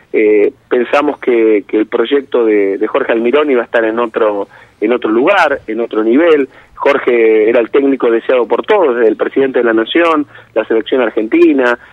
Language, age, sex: Spanish, 30-49, male